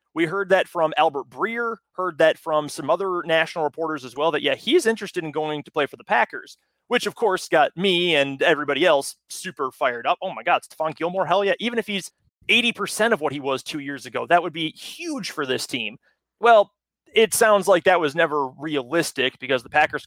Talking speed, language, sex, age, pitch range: 220 wpm, English, male, 30-49, 140-190 Hz